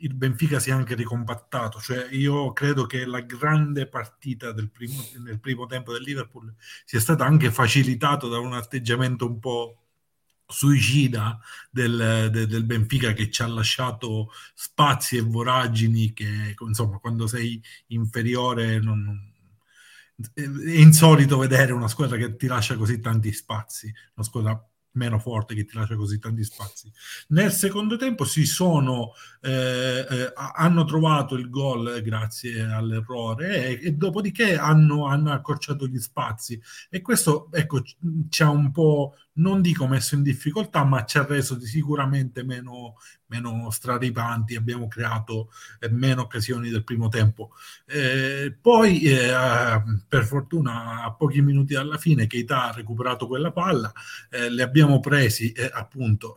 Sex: male